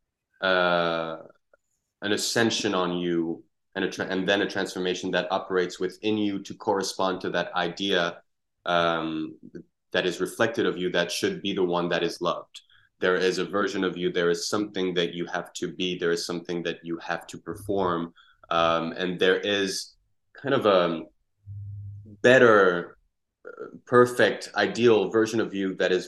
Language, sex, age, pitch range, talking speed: English, male, 20-39, 90-100 Hz, 165 wpm